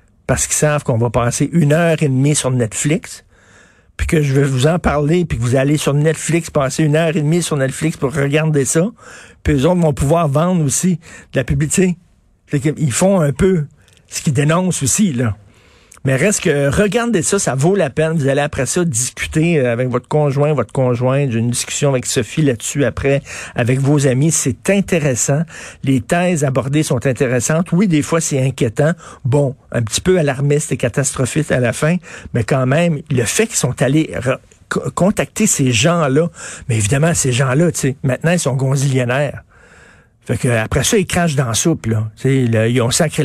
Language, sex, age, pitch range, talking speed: French, male, 50-69, 125-160 Hz, 195 wpm